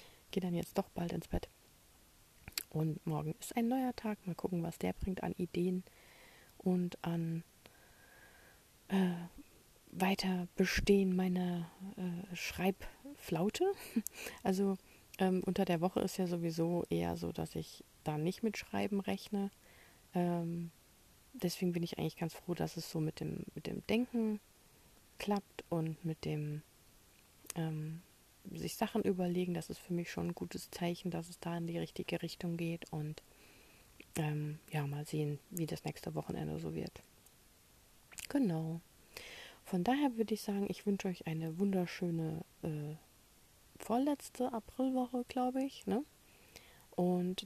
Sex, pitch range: female, 160-210 Hz